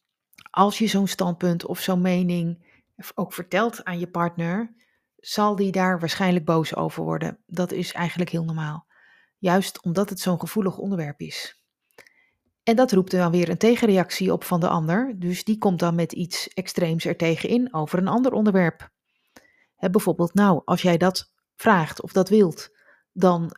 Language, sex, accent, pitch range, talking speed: Dutch, female, Dutch, 165-195 Hz, 165 wpm